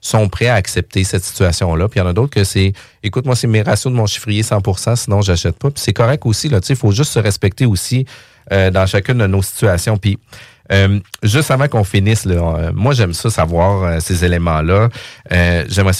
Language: French